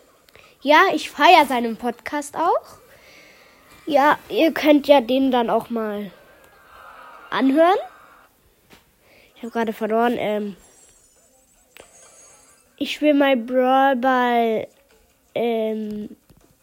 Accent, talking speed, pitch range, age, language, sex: German, 95 wpm, 235-295 Hz, 20-39, German, female